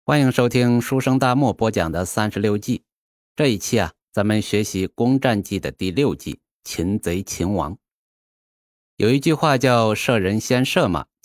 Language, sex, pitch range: Chinese, male, 95-125 Hz